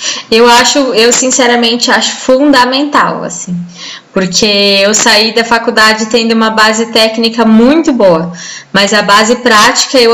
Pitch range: 225-270 Hz